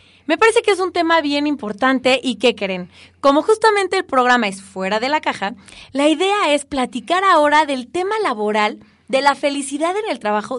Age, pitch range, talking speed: 20-39, 215-285 Hz, 195 wpm